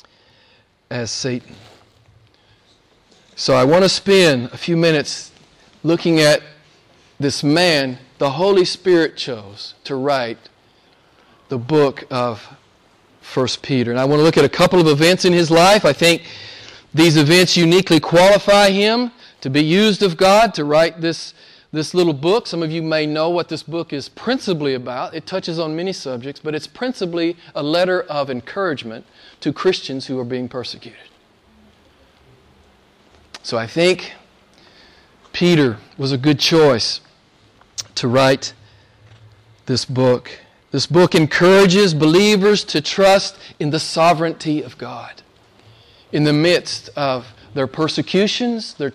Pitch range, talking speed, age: 125-175 Hz, 140 wpm, 40-59